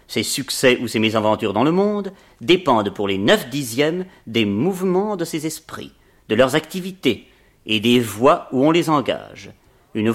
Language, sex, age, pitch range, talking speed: French, male, 40-59, 115-150 Hz, 170 wpm